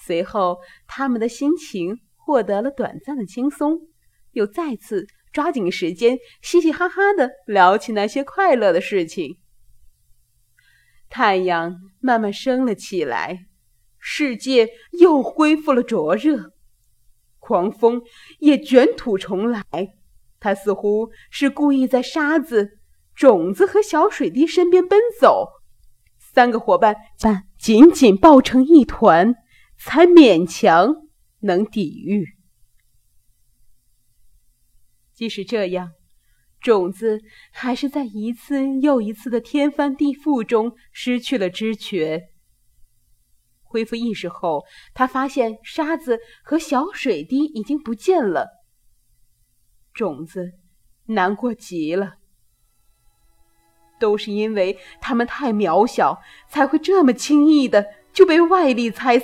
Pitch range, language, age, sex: 185-285 Hz, Chinese, 30-49, female